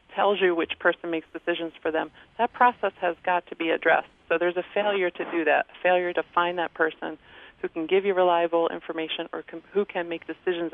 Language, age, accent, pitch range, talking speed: English, 40-59, American, 165-195 Hz, 220 wpm